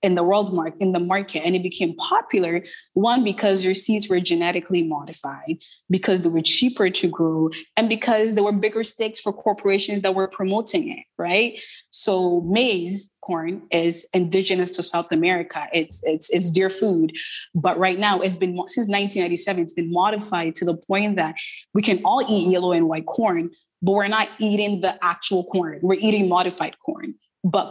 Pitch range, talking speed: 175-215 Hz, 180 wpm